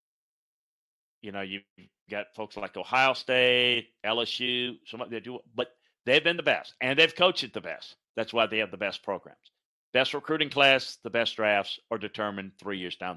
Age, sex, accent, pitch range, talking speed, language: 50-69, male, American, 95-120 Hz, 185 wpm, English